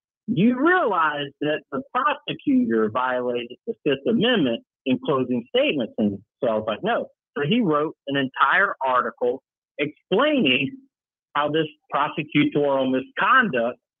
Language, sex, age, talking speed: English, male, 50-69, 125 wpm